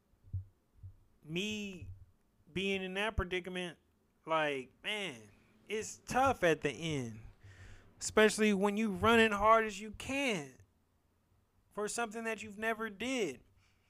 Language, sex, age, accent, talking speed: English, male, 30-49, American, 115 wpm